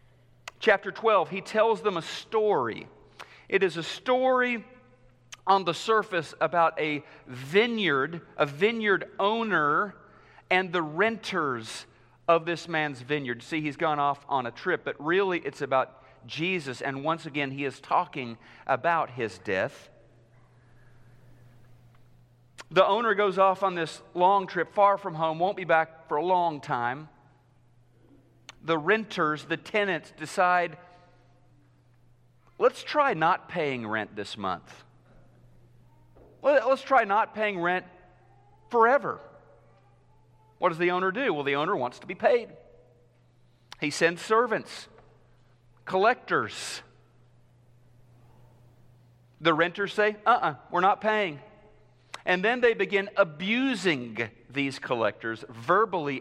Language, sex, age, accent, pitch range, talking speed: English, male, 40-59, American, 120-190 Hz, 125 wpm